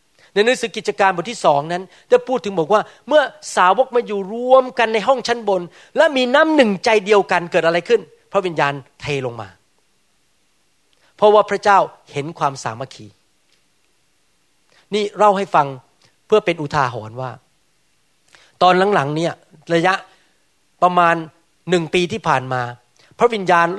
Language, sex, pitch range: Thai, male, 150-205 Hz